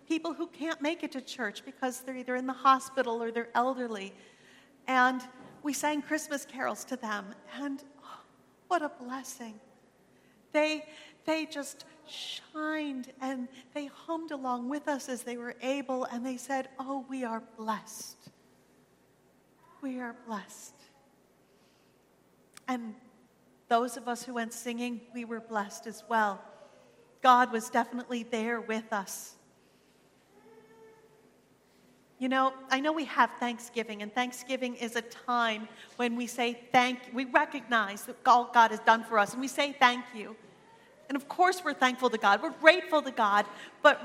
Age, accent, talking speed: 40-59, American, 155 wpm